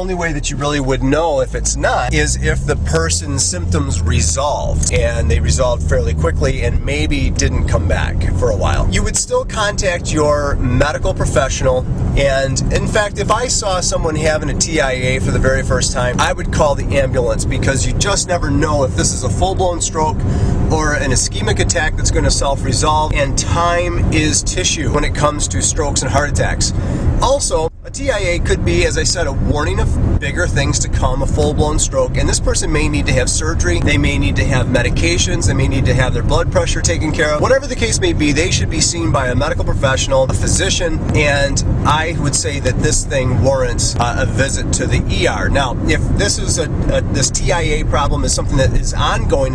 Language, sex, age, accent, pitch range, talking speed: English, male, 30-49, American, 85-135 Hz, 205 wpm